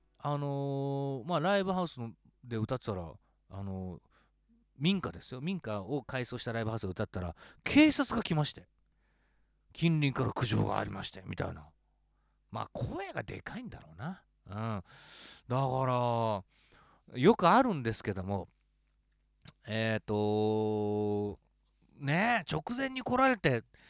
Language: Japanese